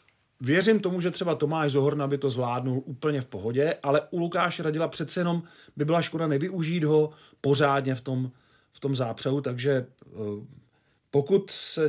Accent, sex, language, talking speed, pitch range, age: native, male, Czech, 160 wpm, 125-150 Hz, 40-59